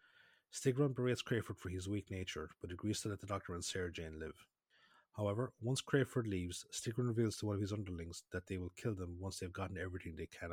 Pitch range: 95-110 Hz